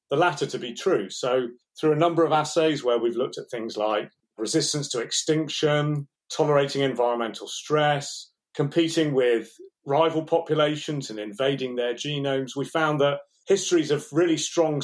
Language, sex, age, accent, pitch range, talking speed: English, male, 40-59, British, 125-160 Hz, 155 wpm